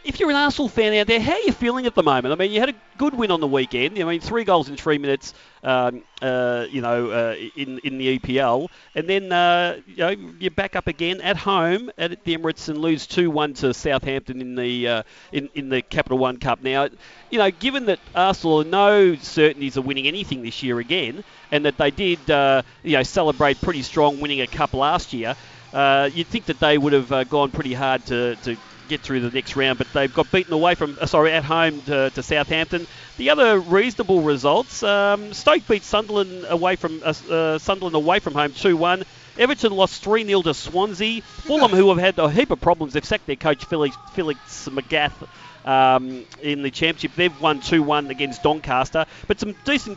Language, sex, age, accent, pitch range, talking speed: English, male, 40-59, Australian, 140-185 Hz, 215 wpm